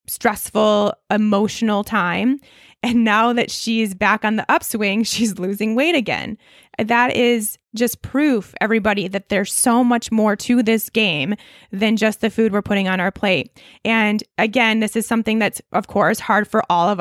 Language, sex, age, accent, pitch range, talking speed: English, female, 20-39, American, 200-230 Hz, 175 wpm